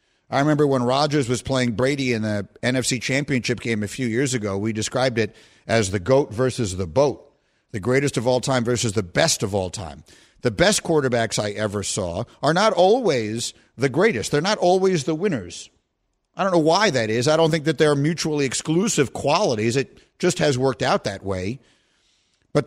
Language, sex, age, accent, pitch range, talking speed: English, male, 50-69, American, 110-140 Hz, 195 wpm